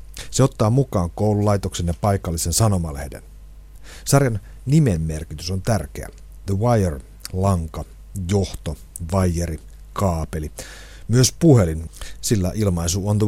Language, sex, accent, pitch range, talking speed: Finnish, male, native, 85-105 Hz, 105 wpm